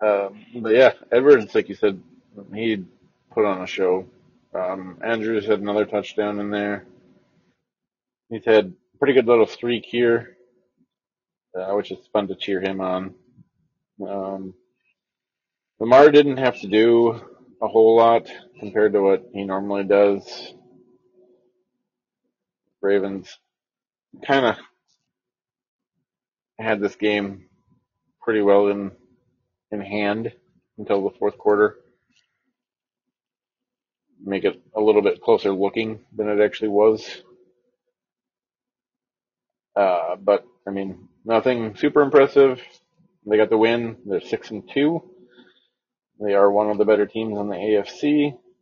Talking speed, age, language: 125 wpm, 30-49, English